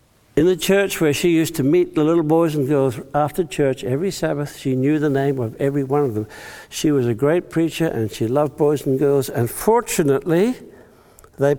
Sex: male